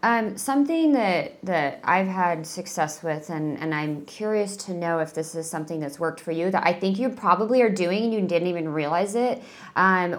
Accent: American